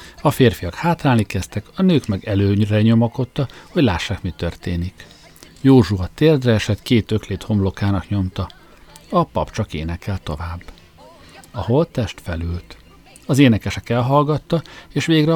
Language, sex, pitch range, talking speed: Hungarian, male, 95-135 Hz, 135 wpm